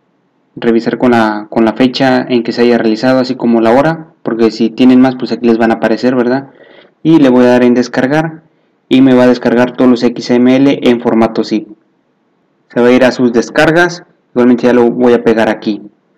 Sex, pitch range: male, 115-135 Hz